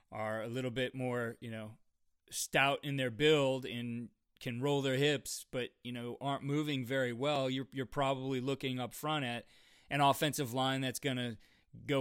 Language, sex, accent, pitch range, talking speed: English, male, American, 115-135 Hz, 185 wpm